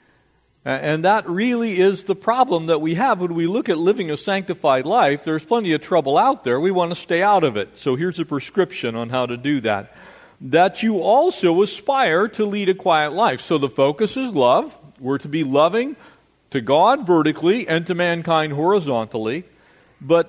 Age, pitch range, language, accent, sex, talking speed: 50-69, 140-185 Hz, English, American, male, 190 wpm